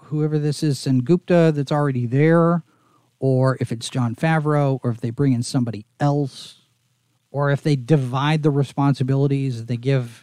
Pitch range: 125-155 Hz